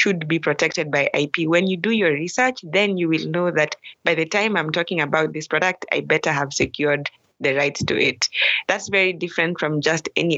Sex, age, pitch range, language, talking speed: female, 20-39, 150-175 Hz, English, 215 wpm